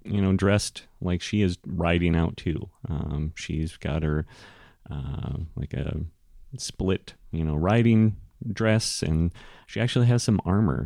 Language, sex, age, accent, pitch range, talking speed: English, male, 30-49, American, 80-105 Hz, 150 wpm